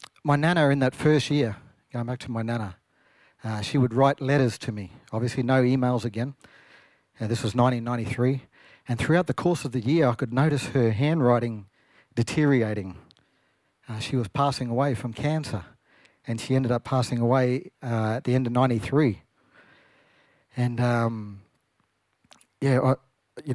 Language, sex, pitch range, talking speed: English, male, 115-135 Hz, 160 wpm